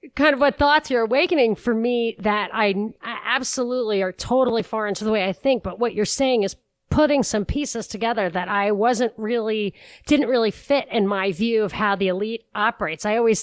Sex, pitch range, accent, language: female, 195-235 Hz, American, English